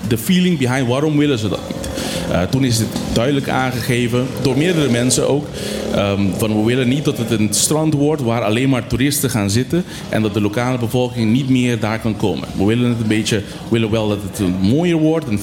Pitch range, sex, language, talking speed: 105-130 Hz, male, Dutch, 220 wpm